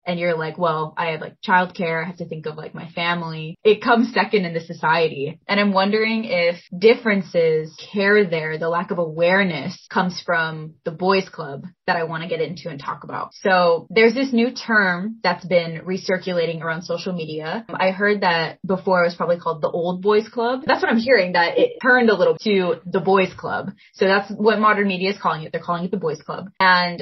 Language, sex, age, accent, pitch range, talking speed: English, female, 20-39, American, 170-210 Hz, 220 wpm